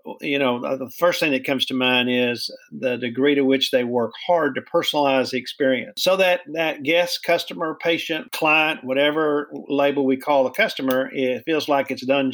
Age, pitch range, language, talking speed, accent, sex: 50-69, 130-165 Hz, English, 190 wpm, American, male